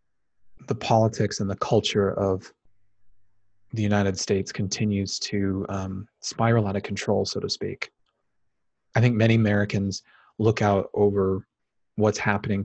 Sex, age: male, 30-49